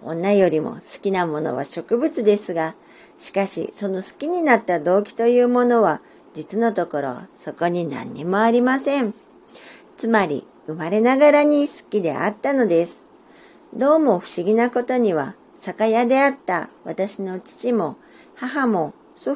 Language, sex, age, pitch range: Japanese, male, 50-69, 175-250 Hz